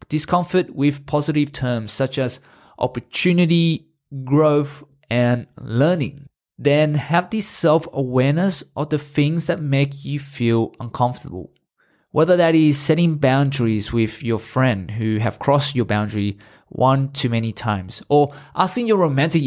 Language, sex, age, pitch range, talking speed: English, male, 20-39, 120-155 Hz, 135 wpm